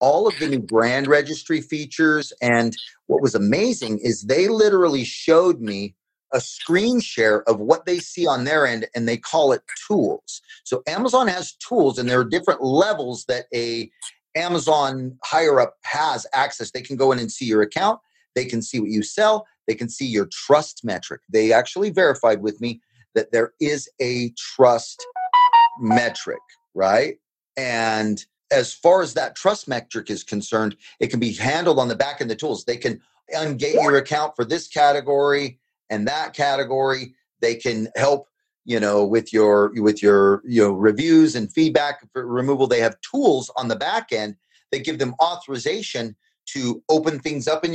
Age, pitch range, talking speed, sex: 30-49, 115-160 Hz, 180 wpm, male